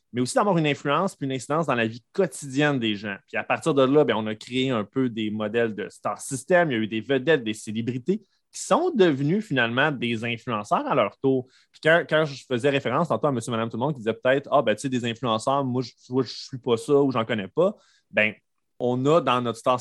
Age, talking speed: 20-39, 265 wpm